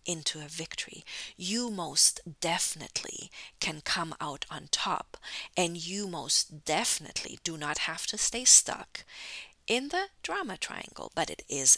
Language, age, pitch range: English, 50-69, 155-205 Hz